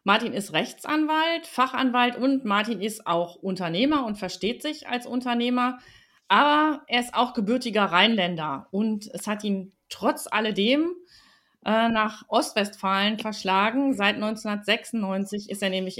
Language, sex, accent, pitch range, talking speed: German, female, German, 200-255 Hz, 130 wpm